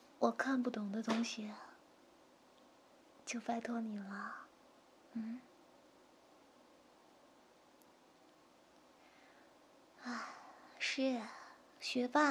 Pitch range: 225-285 Hz